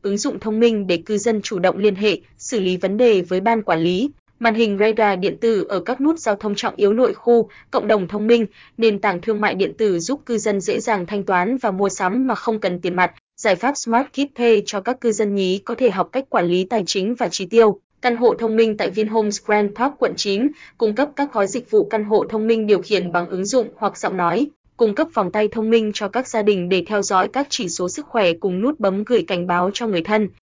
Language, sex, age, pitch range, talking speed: Vietnamese, female, 20-39, 195-230 Hz, 265 wpm